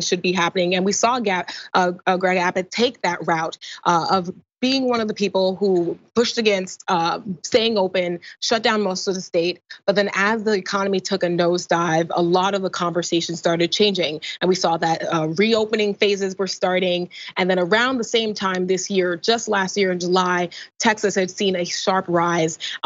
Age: 20-39